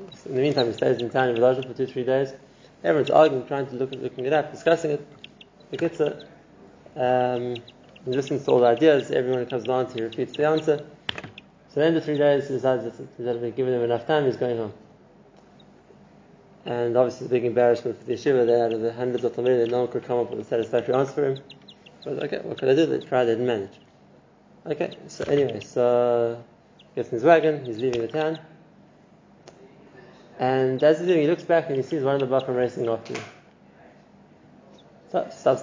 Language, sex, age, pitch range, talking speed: English, male, 20-39, 125-155 Hz, 220 wpm